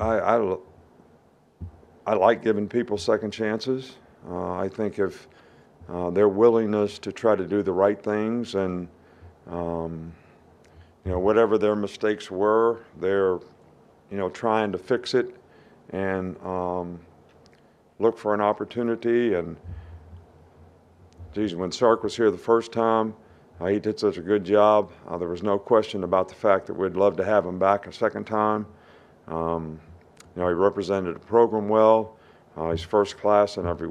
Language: English